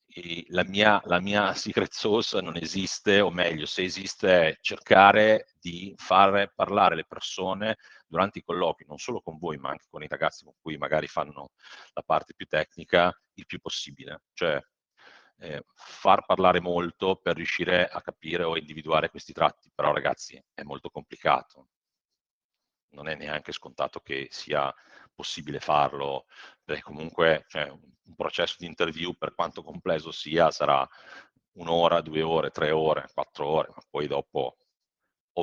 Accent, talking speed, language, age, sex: native, 150 wpm, Italian, 40-59, male